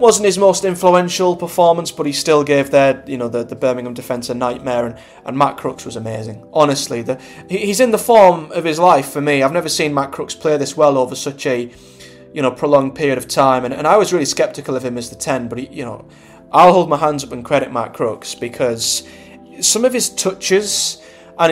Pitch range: 125-180 Hz